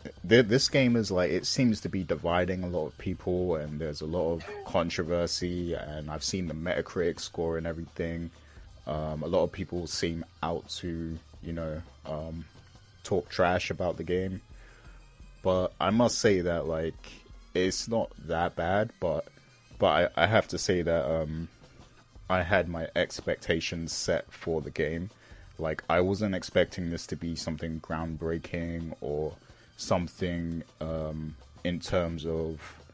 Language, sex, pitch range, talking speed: English, male, 80-90 Hz, 155 wpm